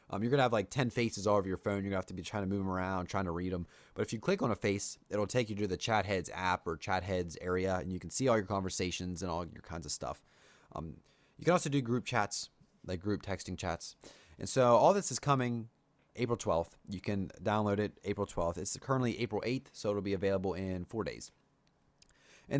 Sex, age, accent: male, 30-49, American